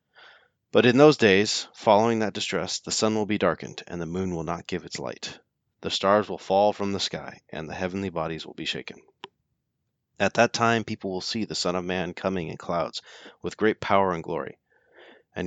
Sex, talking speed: male, 205 wpm